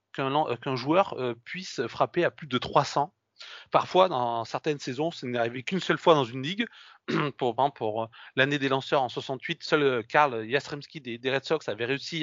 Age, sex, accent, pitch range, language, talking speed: 30-49, male, French, 135-175 Hz, French, 170 wpm